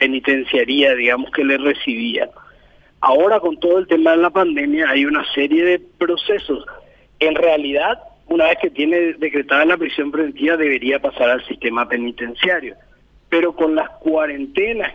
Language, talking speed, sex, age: Spanish, 150 wpm, male, 50-69